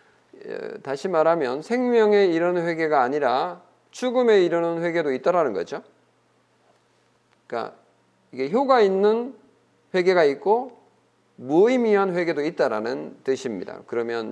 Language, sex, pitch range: Korean, male, 130-205 Hz